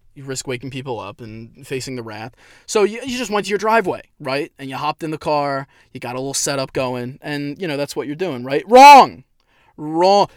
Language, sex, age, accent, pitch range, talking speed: English, male, 20-39, American, 130-200 Hz, 225 wpm